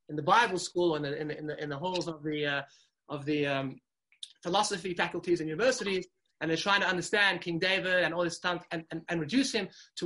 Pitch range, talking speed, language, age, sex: 165-210 Hz, 235 wpm, English, 30-49, male